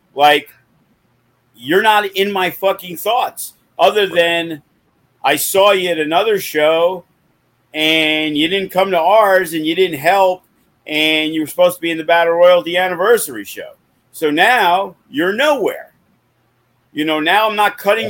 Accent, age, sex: American, 50-69, male